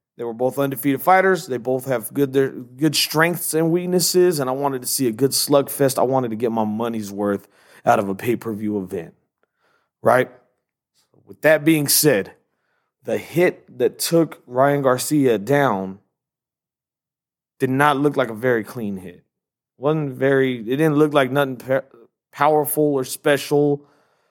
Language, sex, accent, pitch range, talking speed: English, male, American, 125-160 Hz, 170 wpm